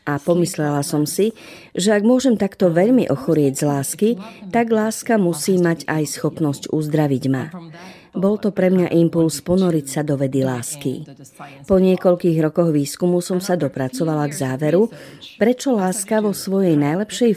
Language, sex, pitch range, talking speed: Slovak, female, 150-195 Hz, 150 wpm